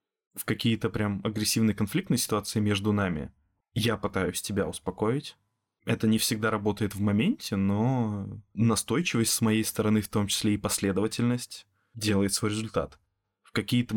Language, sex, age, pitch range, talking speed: Russian, male, 20-39, 95-110 Hz, 140 wpm